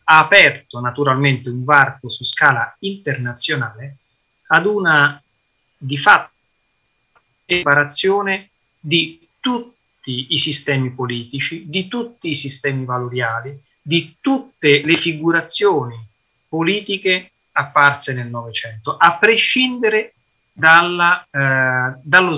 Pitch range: 125-165 Hz